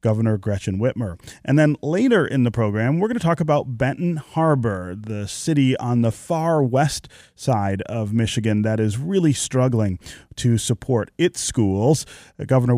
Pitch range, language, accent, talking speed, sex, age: 110-140 Hz, English, American, 160 wpm, male, 30-49